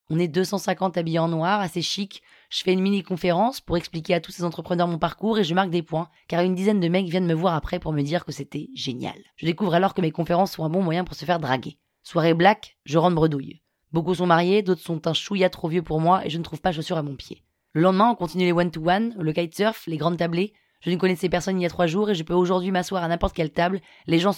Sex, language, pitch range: female, French, 165-190 Hz